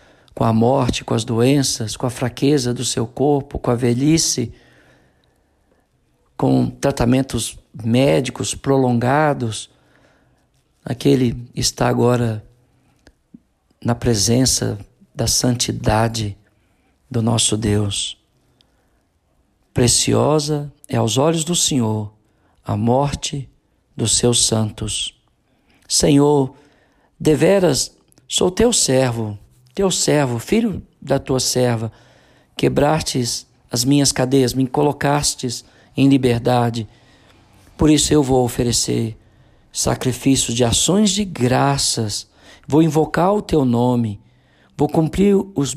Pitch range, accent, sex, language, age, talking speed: 115-140 Hz, Brazilian, male, Portuguese, 50-69, 100 wpm